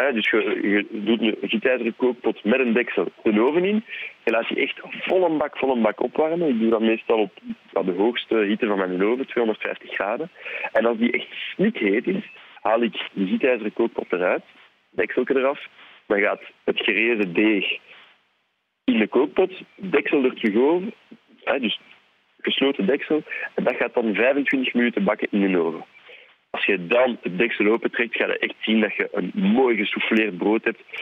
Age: 40-59